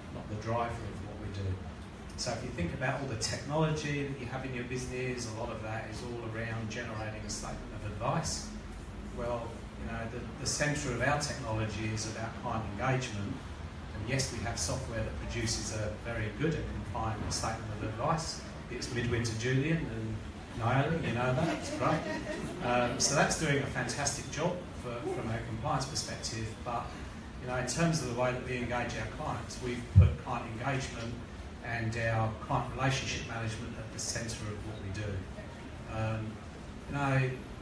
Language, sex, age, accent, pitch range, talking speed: English, male, 30-49, British, 110-125 Hz, 185 wpm